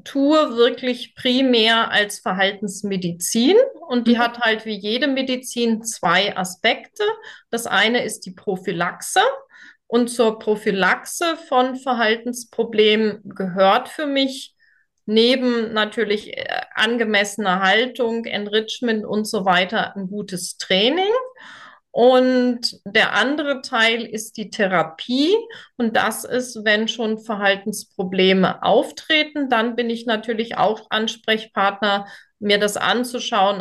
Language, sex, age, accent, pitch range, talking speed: German, female, 30-49, German, 215-255 Hz, 105 wpm